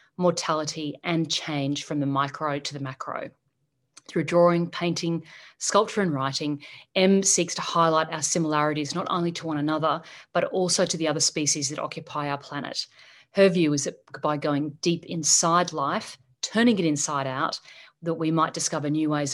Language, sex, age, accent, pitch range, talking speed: English, female, 40-59, Australian, 150-175 Hz, 170 wpm